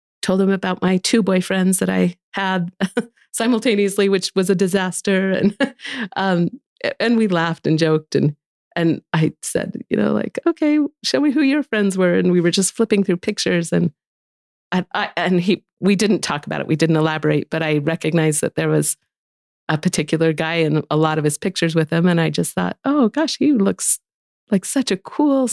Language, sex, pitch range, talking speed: English, female, 155-195 Hz, 195 wpm